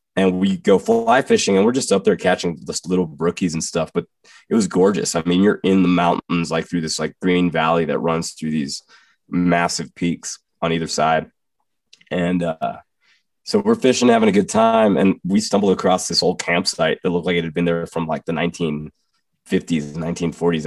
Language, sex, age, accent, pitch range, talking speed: English, male, 20-39, American, 80-95 Hz, 205 wpm